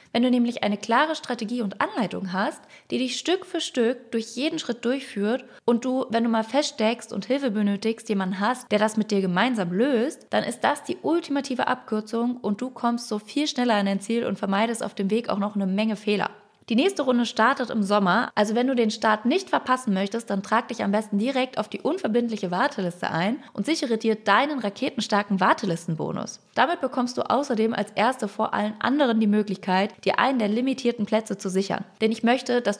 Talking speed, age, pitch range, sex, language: 205 wpm, 20-39, 210-255 Hz, female, German